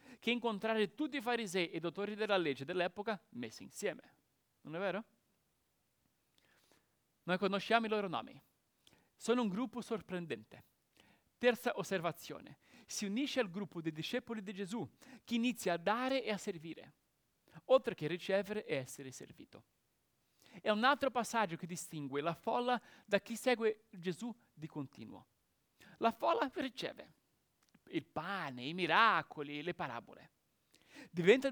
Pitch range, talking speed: 175-240 Hz, 140 wpm